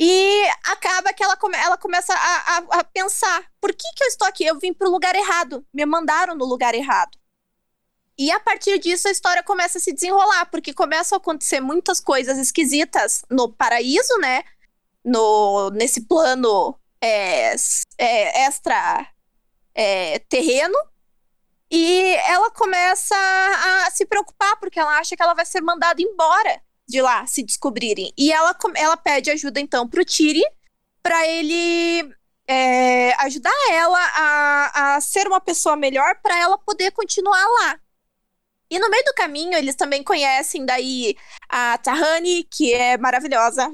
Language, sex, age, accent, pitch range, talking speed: Portuguese, female, 20-39, Brazilian, 270-370 Hz, 150 wpm